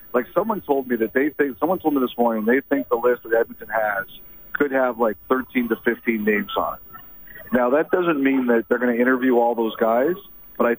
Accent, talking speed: American, 235 wpm